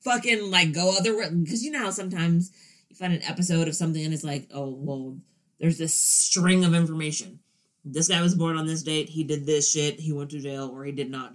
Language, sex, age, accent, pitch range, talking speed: English, female, 30-49, American, 155-195 Hz, 235 wpm